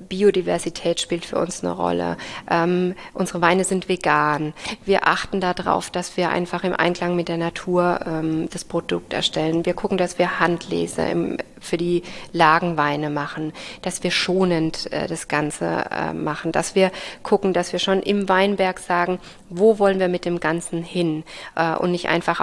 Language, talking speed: German, 170 wpm